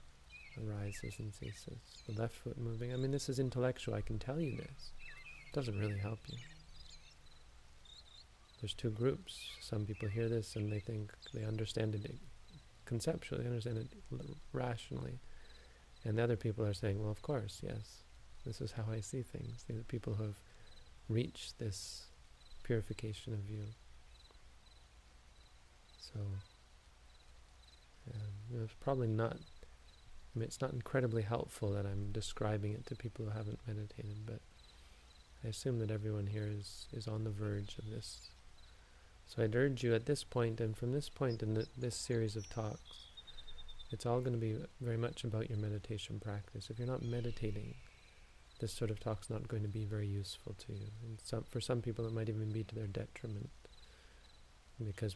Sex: male